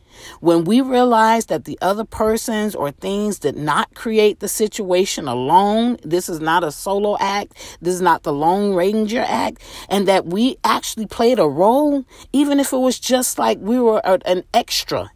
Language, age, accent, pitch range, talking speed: English, 40-59, American, 165-245 Hz, 180 wpm